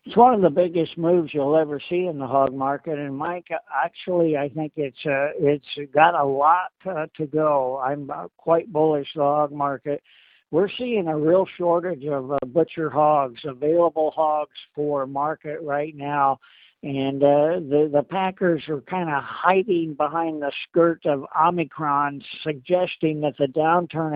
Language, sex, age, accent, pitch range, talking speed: English, male, 60-79, American, 140-165 Hz, 165 wpm